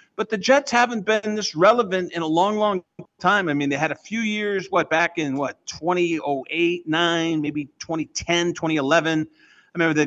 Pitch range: 145-205 Hz